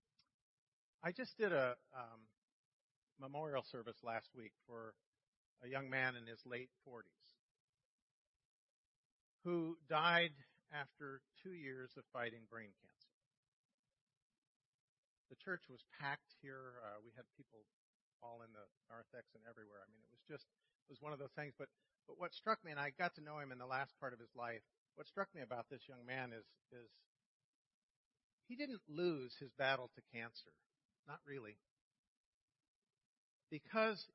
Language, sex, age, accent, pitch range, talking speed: English, male, 50-69, American, 125-170 Hz, 155 wpm